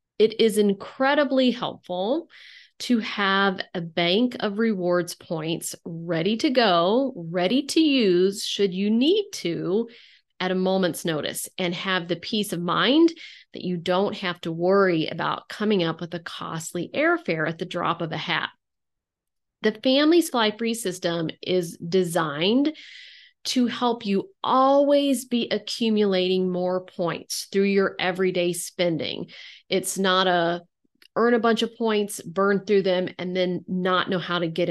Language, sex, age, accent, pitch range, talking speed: English, female, 40-59, American, 175-230 Hz, 150 wpm